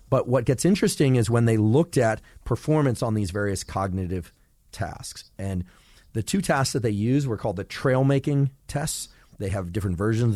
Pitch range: 100-130 Hz